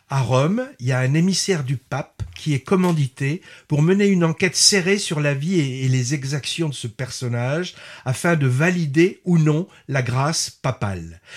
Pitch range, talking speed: 130-175 Hz, 180 wpm